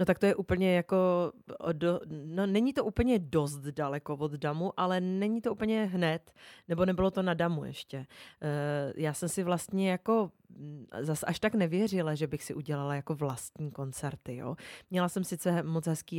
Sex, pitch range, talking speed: female, 155-185 Hz, 175 wpm